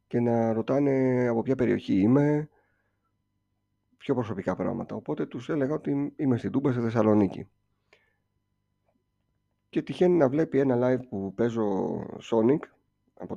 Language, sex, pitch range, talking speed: Greek, male, 100-140 Hz, 130 wpm